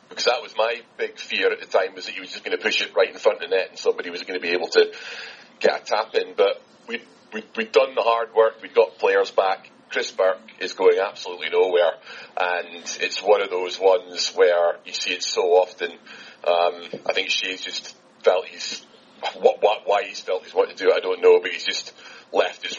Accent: British